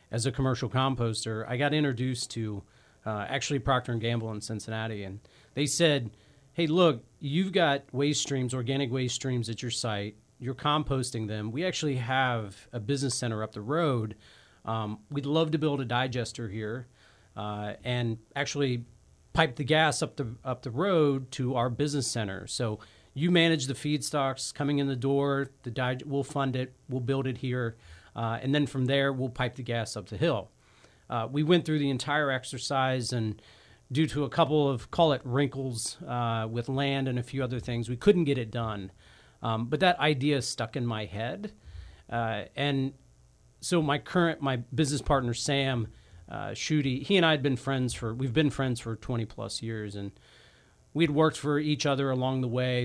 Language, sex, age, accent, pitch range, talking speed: English, male, 40-59, American, 115-140 Hz, 190 wpm